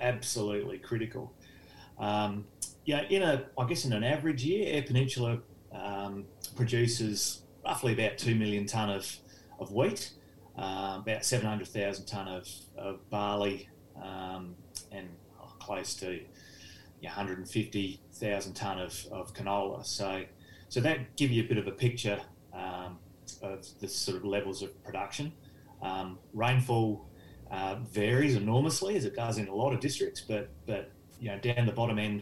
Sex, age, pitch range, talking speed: male, 30-49, 95-120 Hz, 150 wpm